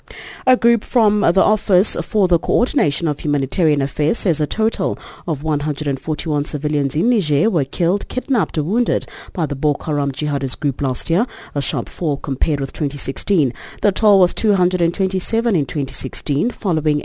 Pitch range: 145-205 Hz